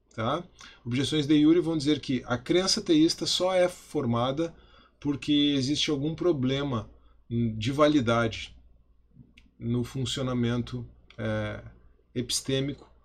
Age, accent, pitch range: 20-39, Brazilian, 110-145 Hz